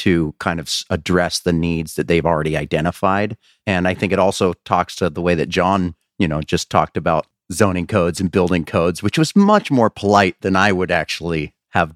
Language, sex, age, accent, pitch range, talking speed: English, male, 30-49, American, 85-105 Hz, 205 wpm